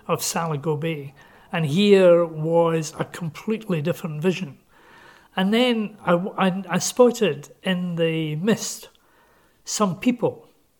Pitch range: 150-190 Hz